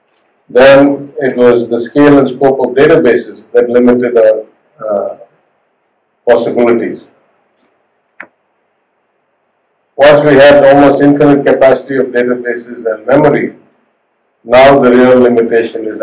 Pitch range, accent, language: 115-140 Hz, Indian, English